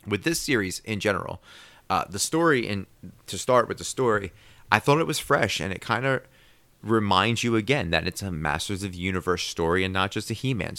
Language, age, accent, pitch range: English, 30-49, American, 90-115 Hz